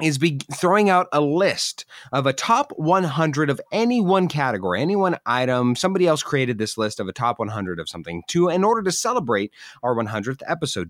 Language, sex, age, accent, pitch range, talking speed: English, male, 30-49, American, 115-165 Hz, 200 wpm